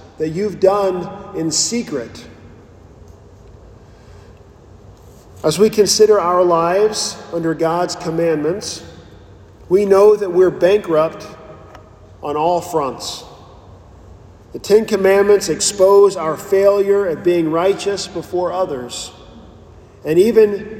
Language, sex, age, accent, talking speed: English, male, 40-59, American, 100 wpm